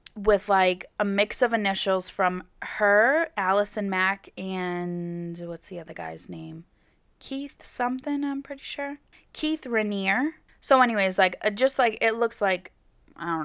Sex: female